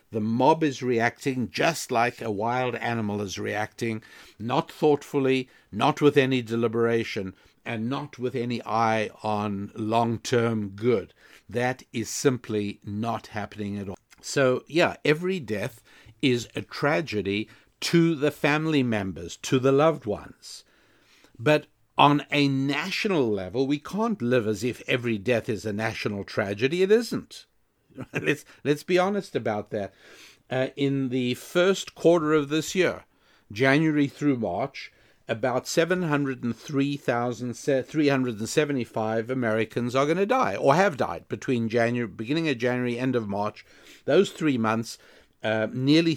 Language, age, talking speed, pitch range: English, 60-79, 135 wpm, 110-145 Hz